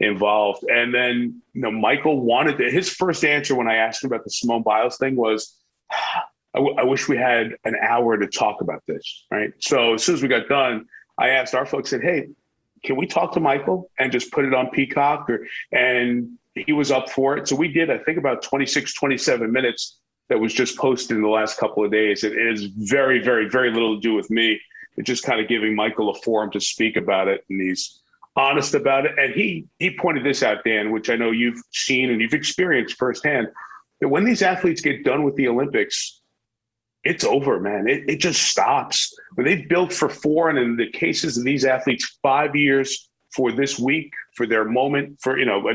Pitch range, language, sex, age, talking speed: 115-145 Hz, English, male, 40-59, 220 wpm